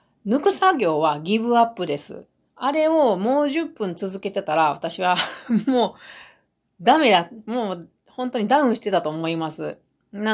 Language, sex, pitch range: Japanese, female, 170-240 Hz